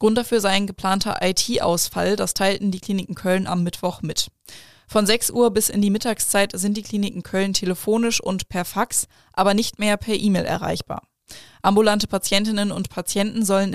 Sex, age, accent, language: female, 20-39, German, German